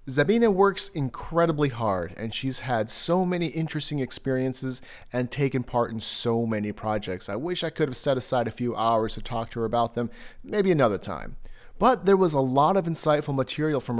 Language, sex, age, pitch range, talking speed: English, male, 30-49, 115-155 Hz, 195 wpm